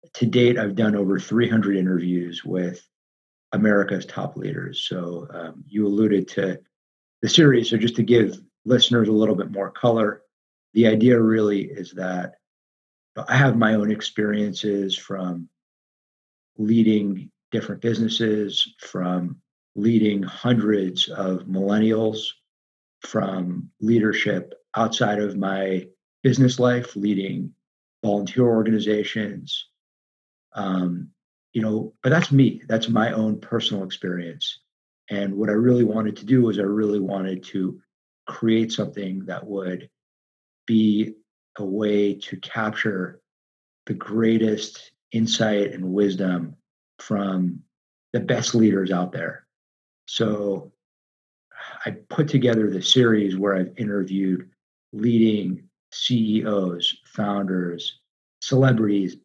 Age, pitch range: 50-69, 95-110 Hz